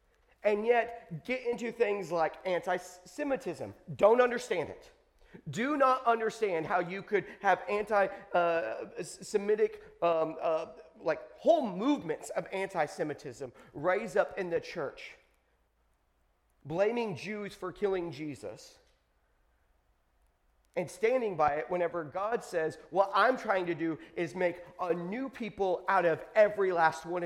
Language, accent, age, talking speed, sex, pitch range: English, American, 30-49, 130 wpm, male, 170-255 Hz